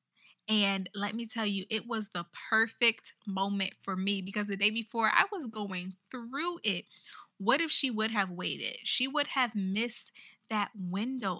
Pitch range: 195-225 Hz